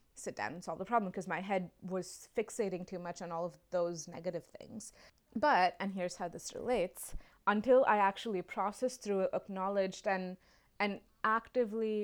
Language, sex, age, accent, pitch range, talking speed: English, female, 20-39, Indian, 175-215 Hz, 175 wpm